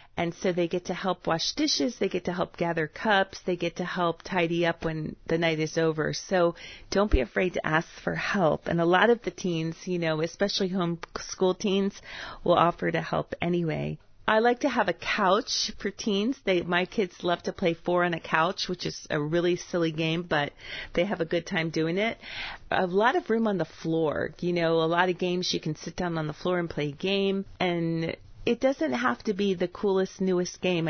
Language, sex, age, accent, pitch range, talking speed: English, female, 40-59, American, 165-190 Hz, 225 wpm